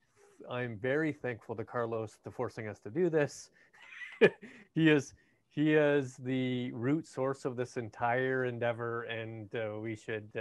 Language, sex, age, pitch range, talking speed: English, male, 30-49, 110-135 Hz, 150 wpm